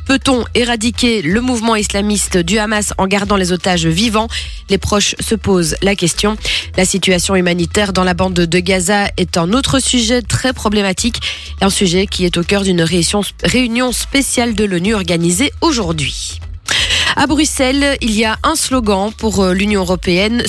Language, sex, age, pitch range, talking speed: French, female, 20-39, 185-240 Hz, 160 wpm